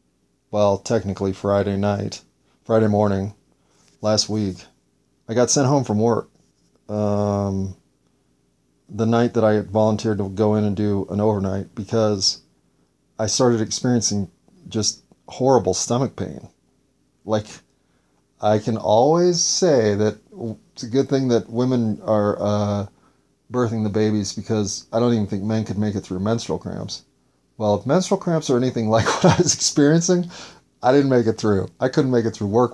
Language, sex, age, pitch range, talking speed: English, male, 30-49, 100-120 Hz, 160 wpm